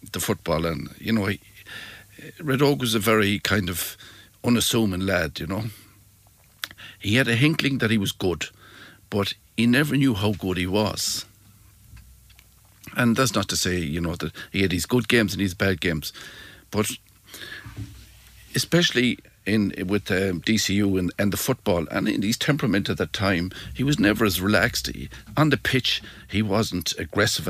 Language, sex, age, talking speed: English, male, 60-79, 170 wpm